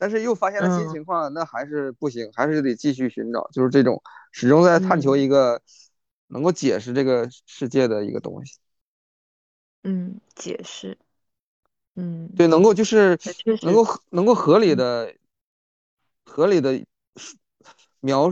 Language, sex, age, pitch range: Chinese, male, 20-39, 135-180 Hz